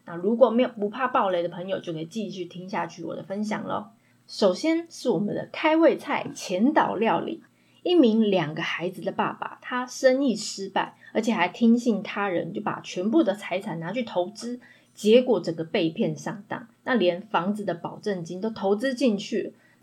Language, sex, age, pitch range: Chinese, female, 20-39, 180-250 Hz